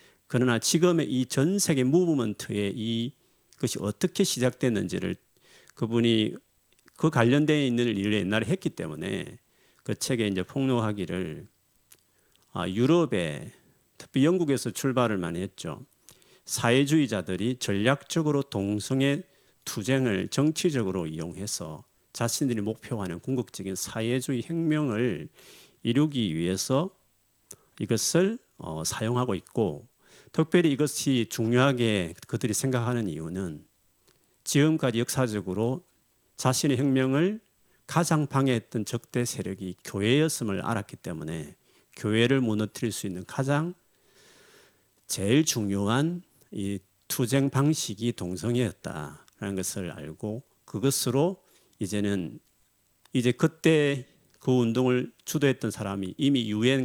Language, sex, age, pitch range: Korean, male, 40-59, 105-140 Hz